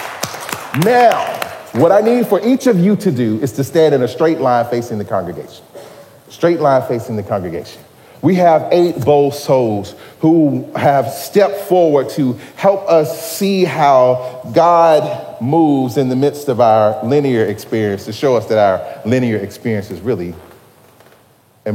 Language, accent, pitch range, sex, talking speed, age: English, American, 100-155 Hz, male, 160 wpm, 40-59